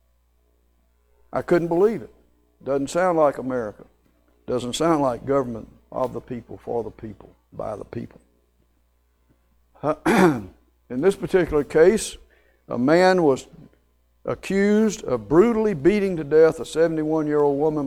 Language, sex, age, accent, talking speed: English, male, 60-79, American, 125 wpm